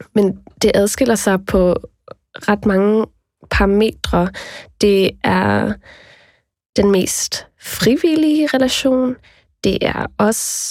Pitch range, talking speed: 175-210 Hz, 95 wpm